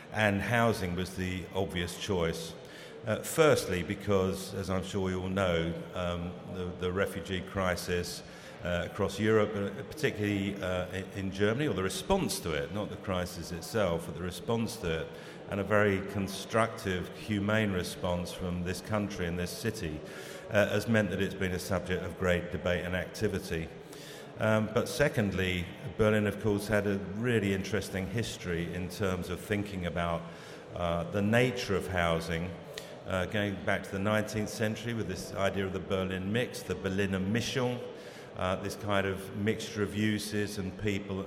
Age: 50-69